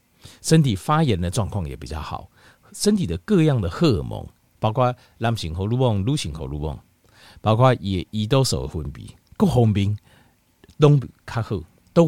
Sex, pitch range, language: male, 90-130 Hz, Chinese